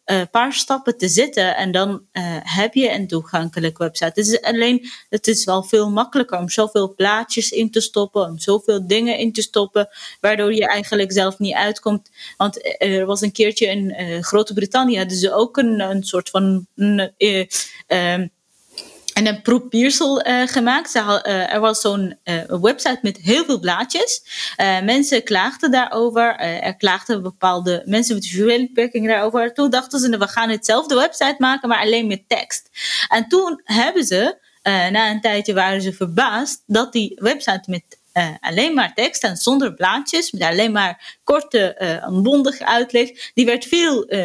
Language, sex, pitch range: Dutch, female, 195-245 Hz